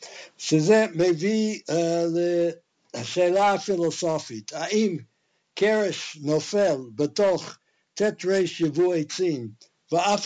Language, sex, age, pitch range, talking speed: Hebrew, male, 60-79, 130-180 Hz, 80 wpm